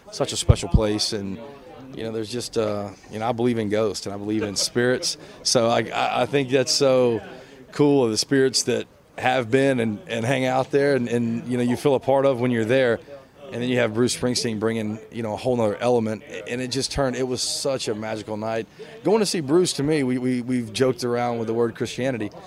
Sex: male